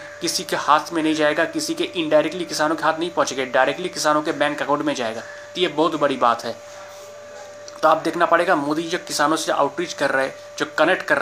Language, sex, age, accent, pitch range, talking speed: Hindi, male, 30-49, native, 145-175 Hz, 225 wpm